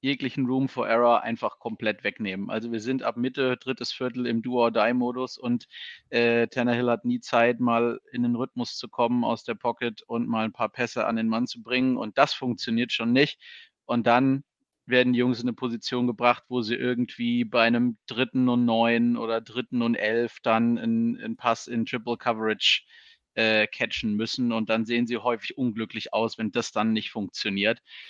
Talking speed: 190 wpm